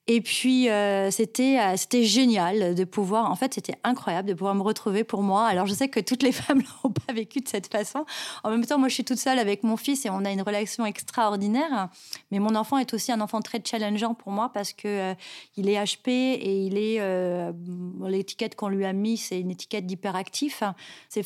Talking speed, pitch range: 220 wpm, 195-240 Hz